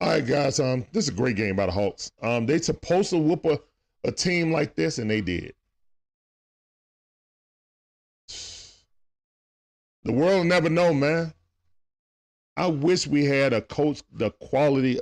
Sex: male